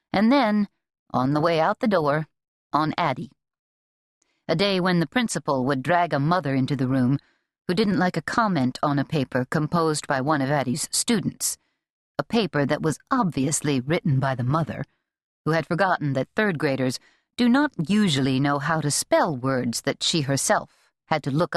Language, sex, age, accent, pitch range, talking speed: English, female, 50-69, American, 140-200 Hz, 180 wpm